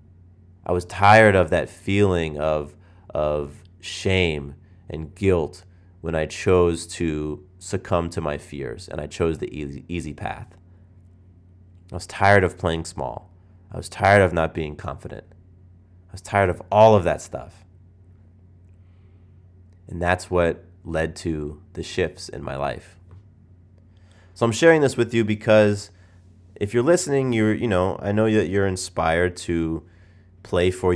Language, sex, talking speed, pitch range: English, male, 150 wpm, 85-95 Hz